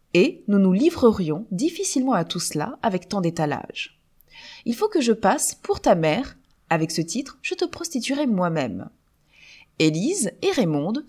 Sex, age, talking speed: female, 20-39, 155 wpm